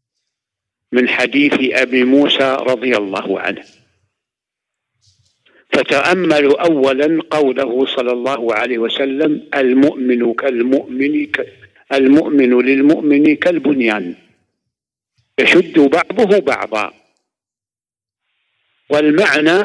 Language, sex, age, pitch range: English, male, 60-79, 115-155 Hz